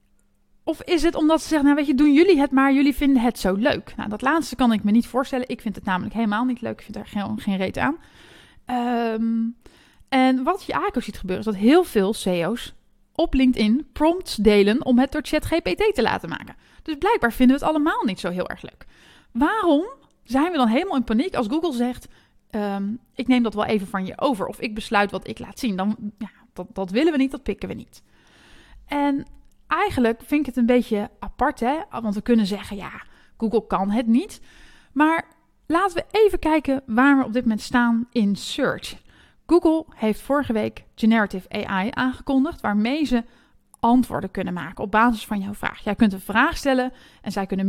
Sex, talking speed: female, 210 wpm